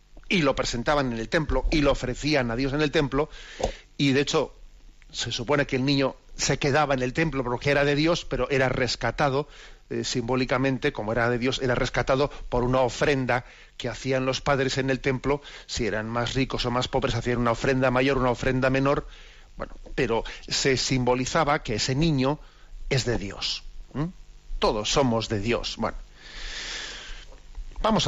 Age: 40-59